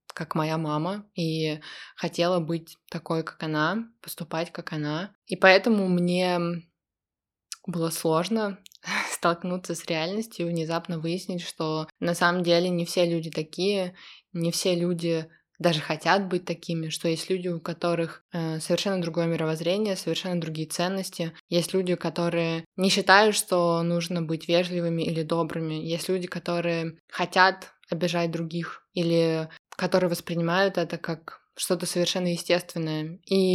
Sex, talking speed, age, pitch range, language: female, 130 wpm, 20-39, 165-185 Hz, Russian